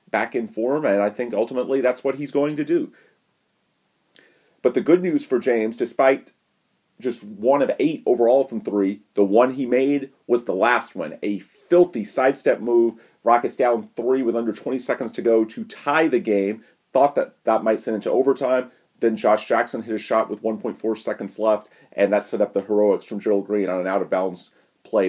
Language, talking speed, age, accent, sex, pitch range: English, 195 wpm, 40-59, American, male, 100-130 Hz